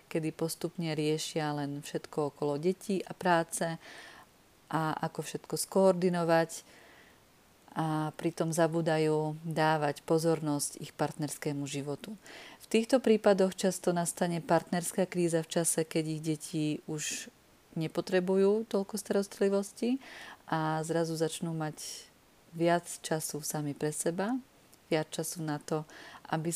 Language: Czech